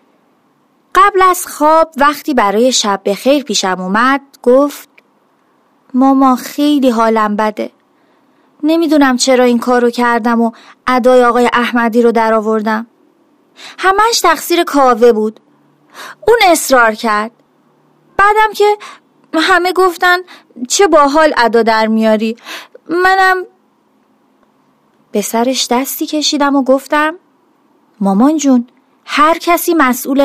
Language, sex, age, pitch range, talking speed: Persian, female, 30-49, 220-295 Hz, 105 wpm